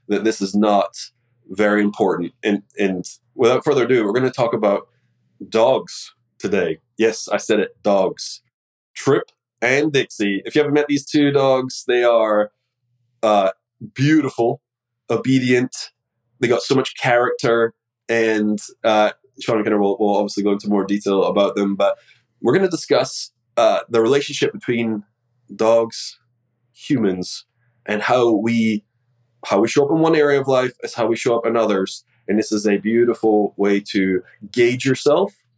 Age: 20-39